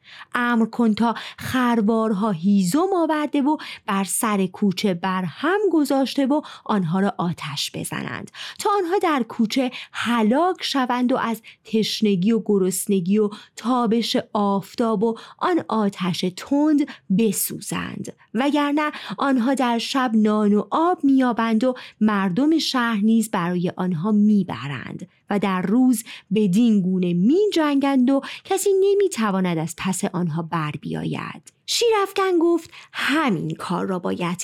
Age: 30-49